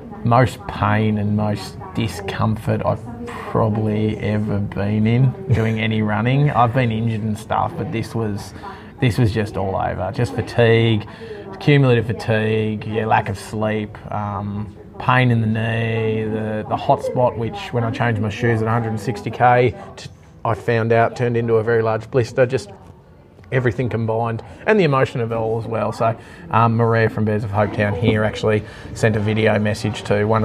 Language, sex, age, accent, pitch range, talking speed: English, male, 20-39, Australian, 105-115 Hz, 170 wpm